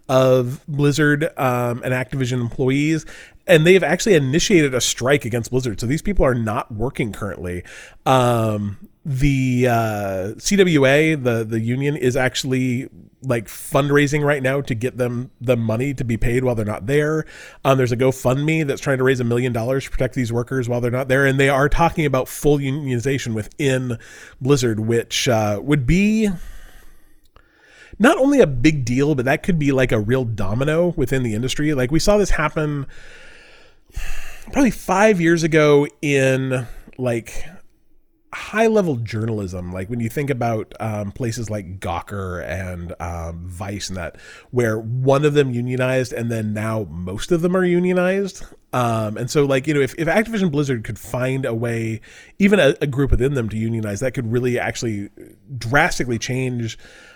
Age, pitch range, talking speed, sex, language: 30-49, 115-145 Hz, 170 wpm, male, English